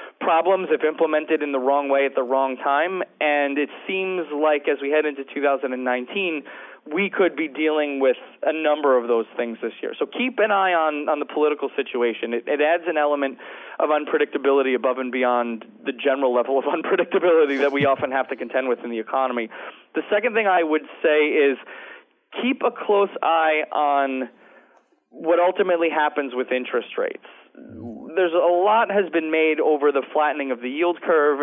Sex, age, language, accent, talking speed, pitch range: male, 30-49, English, American, 185 wpm, 140-185 Hz